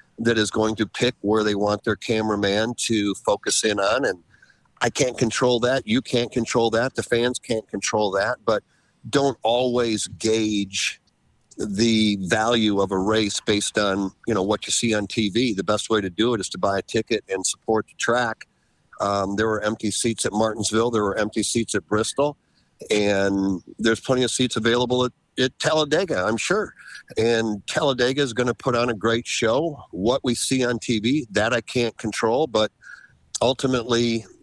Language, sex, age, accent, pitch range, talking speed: English, male, 50-69, American, 105-125 Hz, 185 wpm